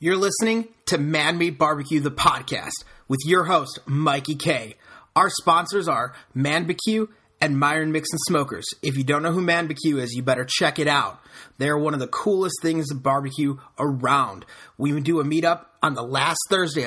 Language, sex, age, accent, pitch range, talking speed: English, male, 30-49, American, 140-175 Hz, 180 wpm